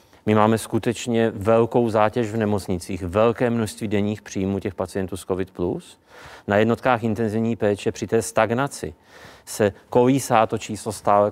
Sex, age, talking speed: male, 40-59, 150 wpm